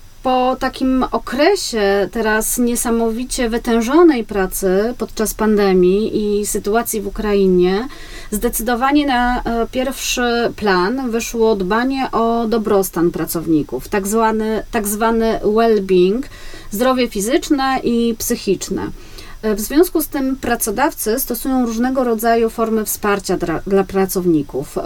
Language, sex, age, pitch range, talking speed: Polish, female, 30-49, 200-245 Hz, 100 wpm